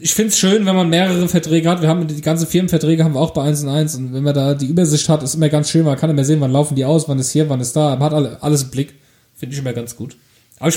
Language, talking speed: German, 320 wpm